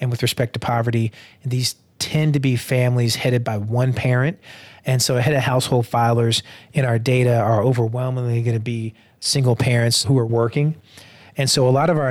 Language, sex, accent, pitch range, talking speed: English, male, American, 120-135 Hz, 195 wpm